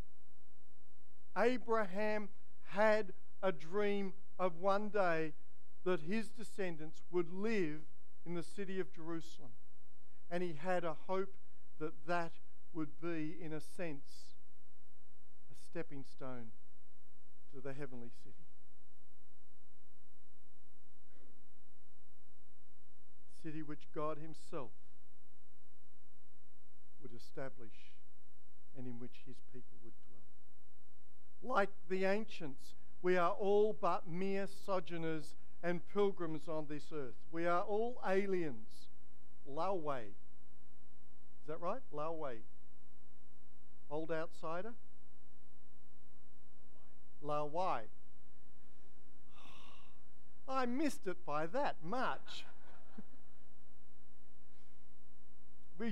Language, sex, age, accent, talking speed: English, male, 50-69, Australian, 90 wpm